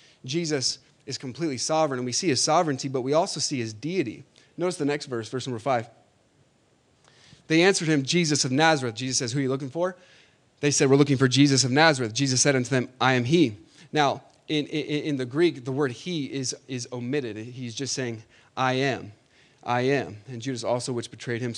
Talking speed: 210 wpm